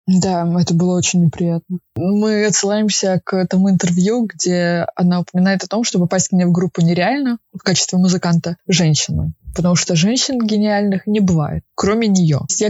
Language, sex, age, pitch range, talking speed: Russian, female, 20-39, 175-210 Hz, 165 wpm